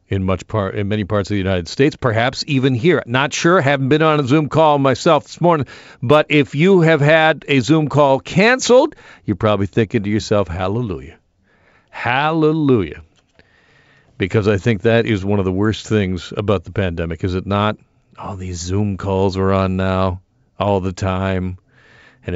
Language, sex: English, male